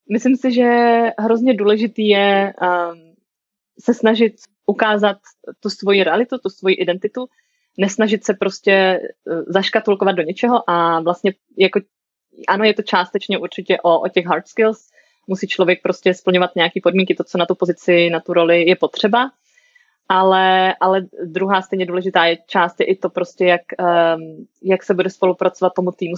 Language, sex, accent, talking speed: Czech, female, native, 160 wpm